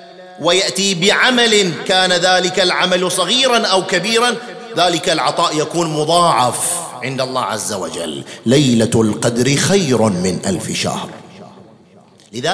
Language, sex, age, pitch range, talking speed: English, male, 40-59, 165-230 Hz, 110 wpm